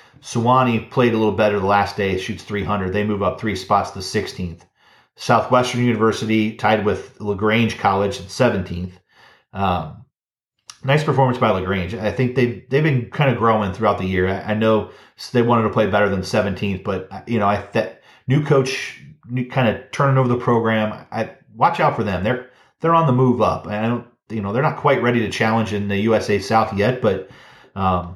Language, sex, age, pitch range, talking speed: English, male, 30-49, 95-120 Hz, 200 wpm